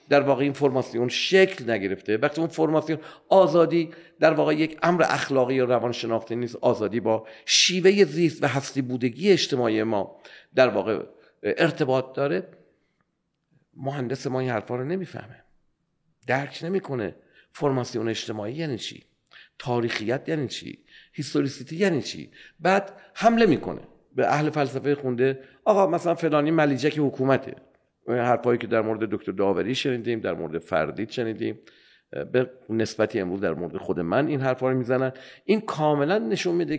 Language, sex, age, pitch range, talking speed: Persian, male, 50-69, 125-170 Hz, 145 wpm